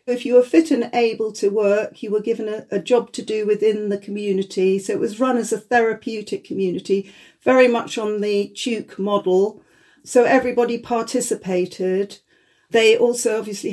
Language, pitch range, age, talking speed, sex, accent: English, 205-250 Hz, 50-69, 170 wpm, female, British